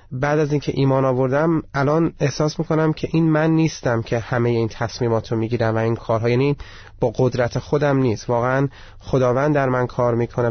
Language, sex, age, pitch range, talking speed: Persian, male, 30-49, 120-145 Hz, 195 wpm